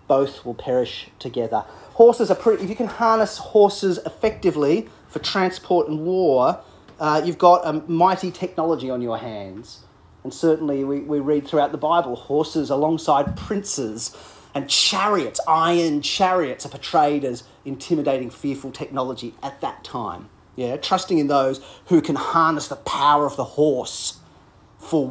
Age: 30-49